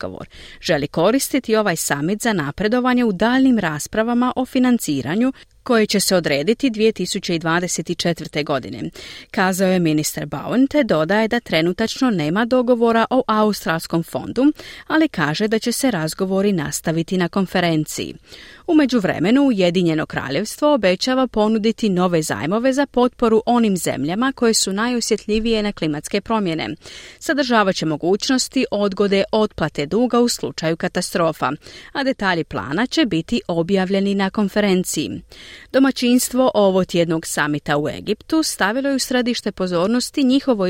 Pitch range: 170-240 Hz